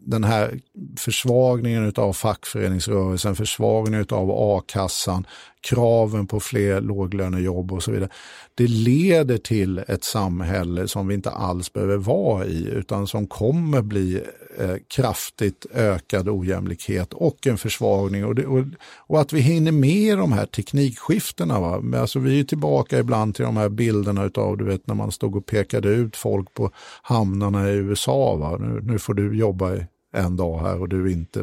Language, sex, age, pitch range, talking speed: Swedish, male, 50-69, 95-120 Hz, 155 wpm